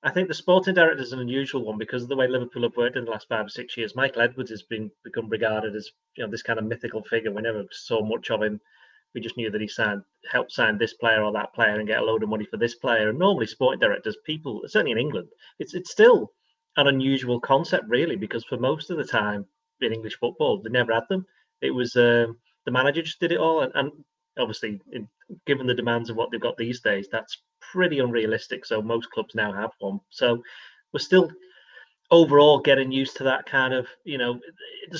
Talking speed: 235 wpm